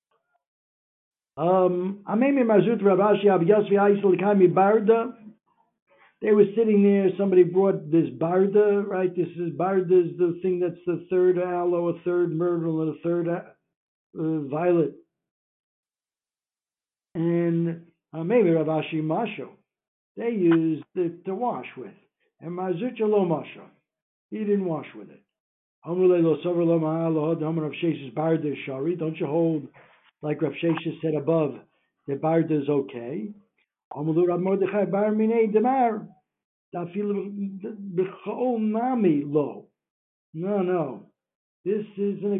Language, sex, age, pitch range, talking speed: English, male, 60-79, 160-200 Hz, 95 wpm